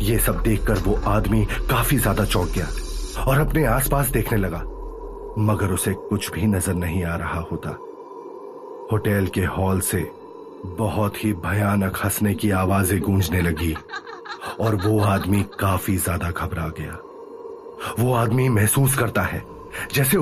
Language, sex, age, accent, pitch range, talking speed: Hindi, male, 30-49, native, 95-150 Hz, 140 wpm